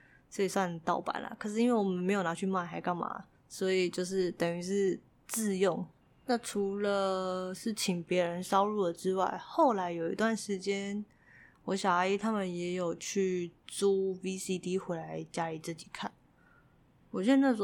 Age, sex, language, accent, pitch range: 20-39, female, Chinese, native, 180-210 Hz